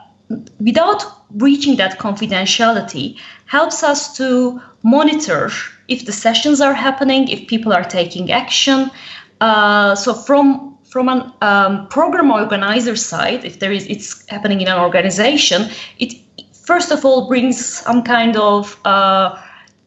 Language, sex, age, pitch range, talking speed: English, female, 20-39, 205-275 Hz, 135 wpm